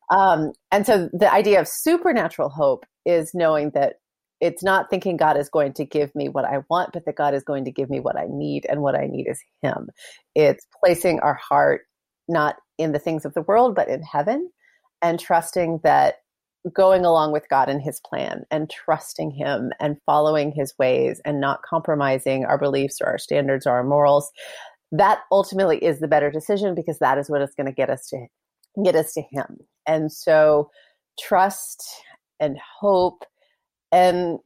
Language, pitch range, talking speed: English, 150-195 Hz, 190 wpm